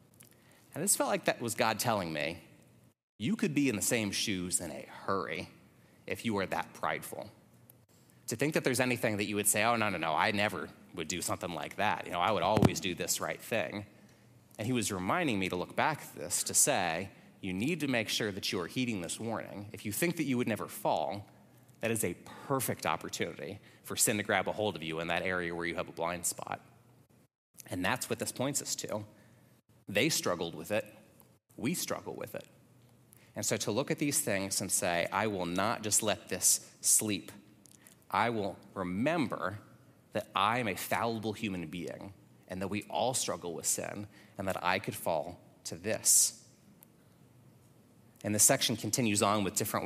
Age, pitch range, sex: 30-49, 95-120 Hz, male